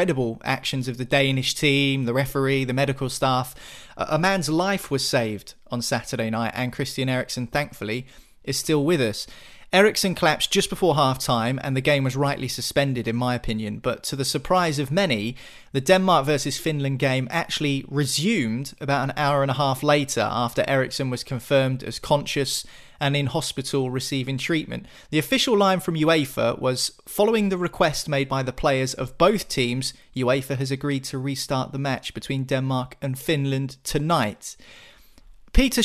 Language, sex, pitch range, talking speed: English, male, 130-150 Hz, 170 wpm